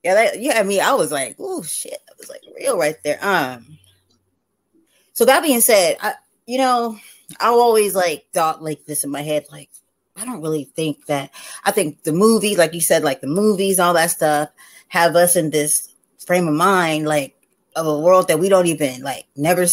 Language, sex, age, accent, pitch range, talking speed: English, female, 20-39, American, 150-185 Hz, 210 wpm